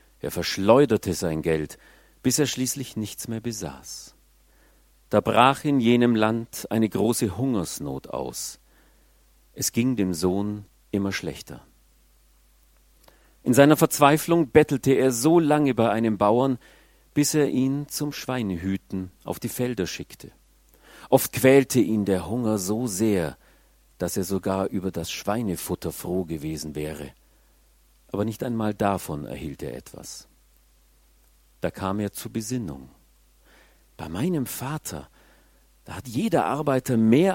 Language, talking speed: German, 130 wpm